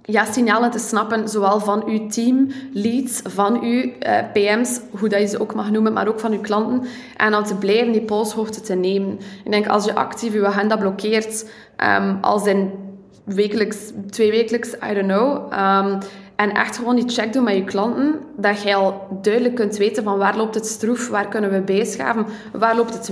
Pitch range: 195-230 Hz